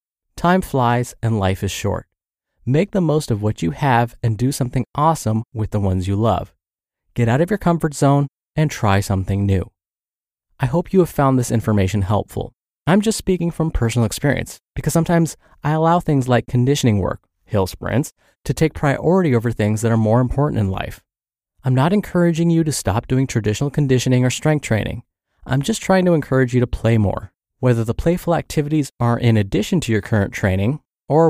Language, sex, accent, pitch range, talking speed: English, male, American, 110-155 Hz, 190 wpm